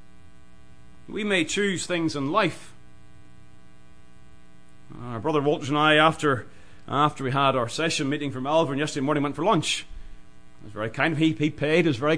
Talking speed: 170 wpm